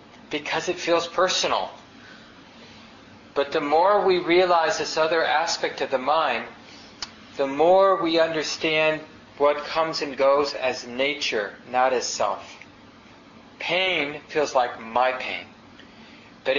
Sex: male